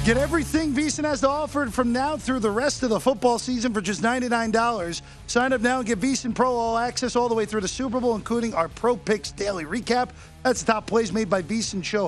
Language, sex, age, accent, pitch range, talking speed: English, male, 50-69, American, 210-250 Hz, 235 wpm